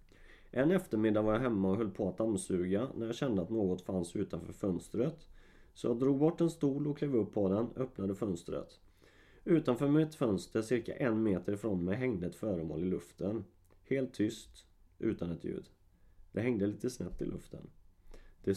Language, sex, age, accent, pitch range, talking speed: Swedish, male, 30-49, native, 95-125 Hz, 180 wpm